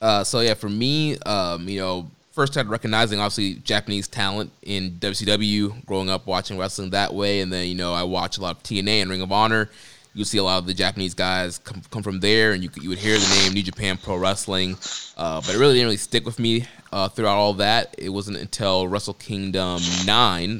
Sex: male